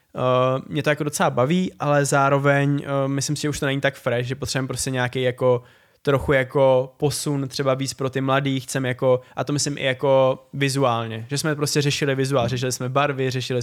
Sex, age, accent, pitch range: male, 20-39, native, 130-145 Hz